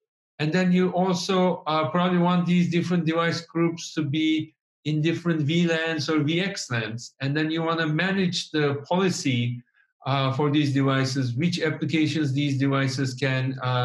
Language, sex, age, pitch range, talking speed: English, male, 50-69, 135-170 Hz, 155 wpm